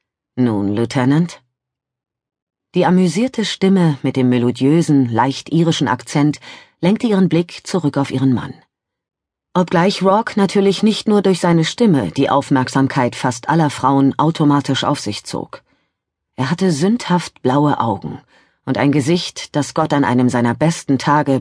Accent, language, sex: German, German, female